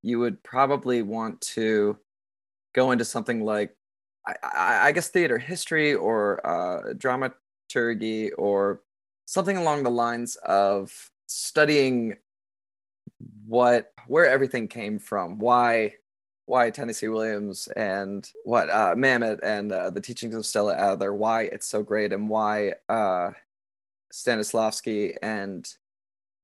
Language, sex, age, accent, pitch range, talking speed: English, male, 20-39, American, 100-115 Hz, 125 wpm